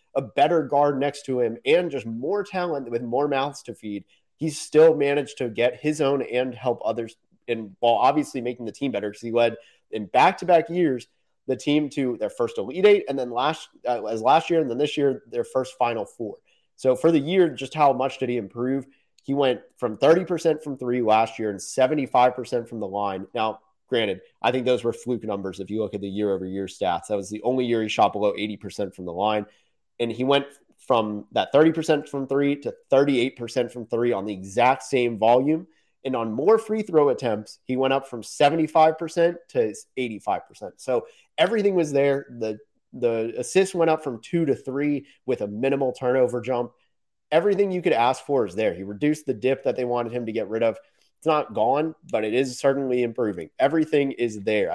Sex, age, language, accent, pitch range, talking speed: male, 30-49, English, American, 115-150 Hz, 205 wpm